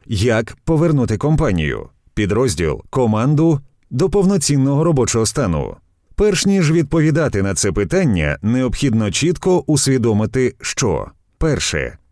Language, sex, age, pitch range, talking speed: Ukrainian, male, 30-49, 110-160 Hz, 100 wpm